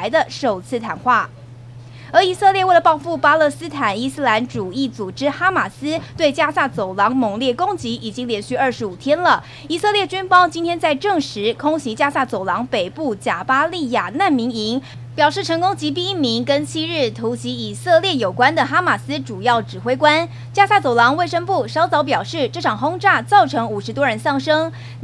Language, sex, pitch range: Chinese, female, 220-310 Hz